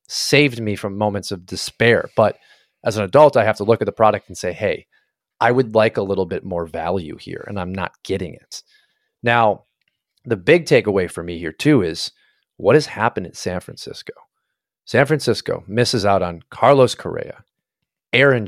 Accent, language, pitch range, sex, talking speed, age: American, English, 100-125 Hz, male, 185 wpm, 30-49